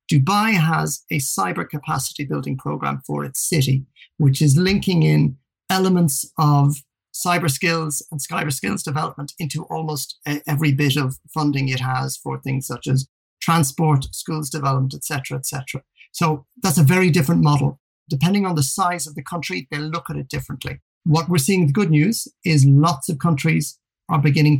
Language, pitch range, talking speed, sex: English, 140-165 Hz, 175 wpm, male